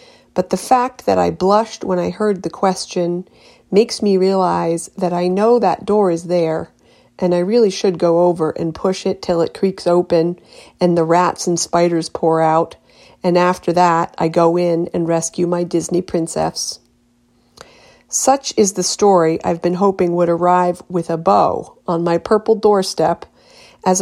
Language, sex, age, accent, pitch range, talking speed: English, female, 40-59, American, 170-200 Hz, 170 wpm